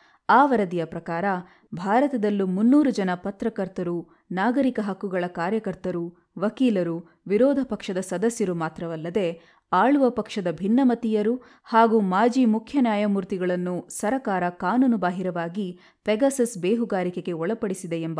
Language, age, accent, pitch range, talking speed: Kannada, 20-39, native, 180-230 Hz, 90 wpm